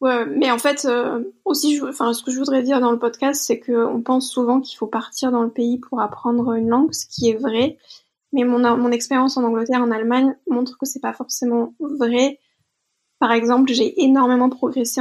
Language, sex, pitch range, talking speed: French, female, 240-275 Hz, 215 wpm